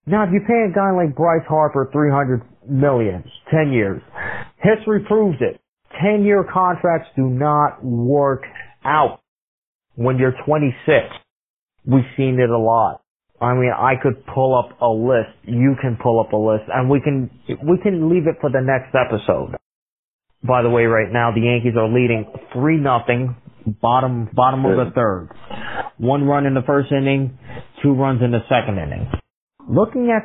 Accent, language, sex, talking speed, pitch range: American, English, male, 170 wpm, 125-165 Hz